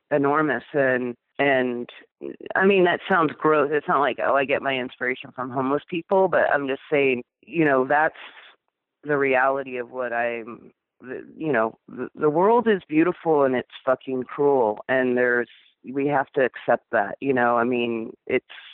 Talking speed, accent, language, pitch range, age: 175 wpm, American, English, 125-145 Hz, 40-59